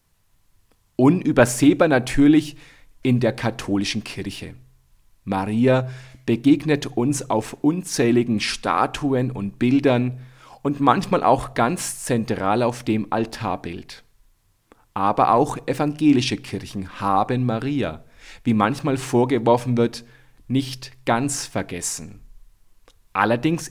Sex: male